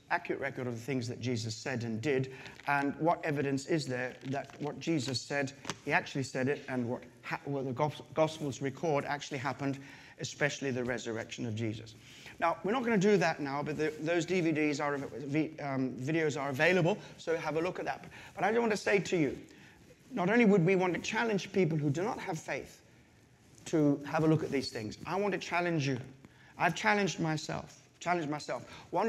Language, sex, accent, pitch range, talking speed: English, male, British, 130-165 Hz, 200 wpm